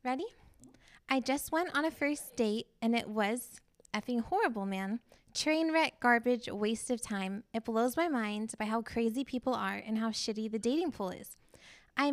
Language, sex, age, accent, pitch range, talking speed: English, female, 10-29, American, 225-275 Hz, 185 wpm